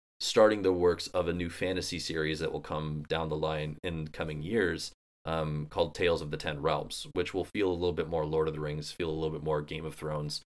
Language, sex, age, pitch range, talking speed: English, male, 20-39, 75-90 Hz, 250 wpm